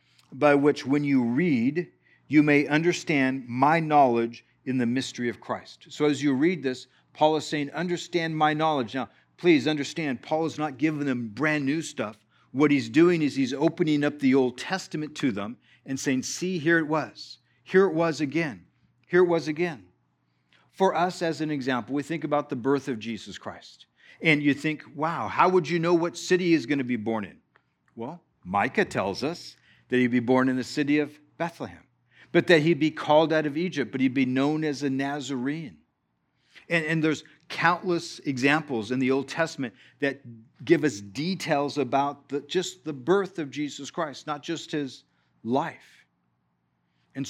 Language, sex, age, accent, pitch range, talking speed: English, male, 50-69, American, 130-160 Hz, 185 wpm